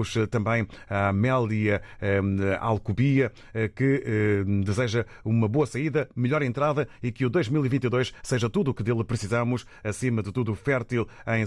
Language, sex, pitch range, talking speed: Portuguese, male, 105-125 Hz, 135 wpm